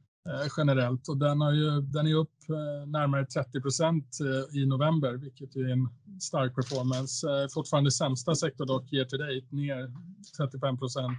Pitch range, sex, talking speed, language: 135-150 Hz, male, 140 wpm, Swedish